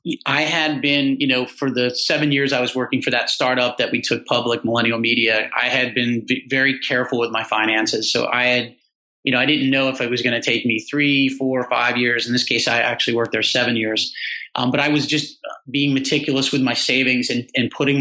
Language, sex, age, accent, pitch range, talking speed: English, male, 30-49, American, 120-140 Hz, 235 wpm